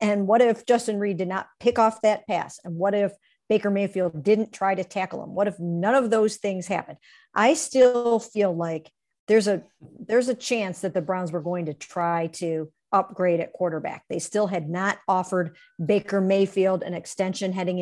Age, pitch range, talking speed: 50-69, 175-215 Hz, 195 wpm